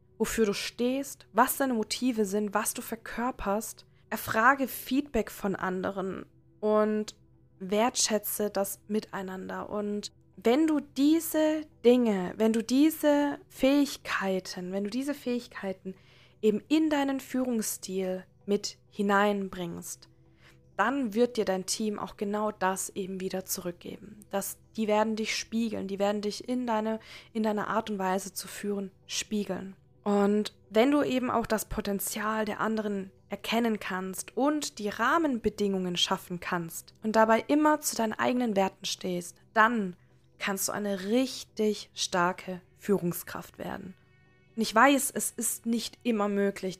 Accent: German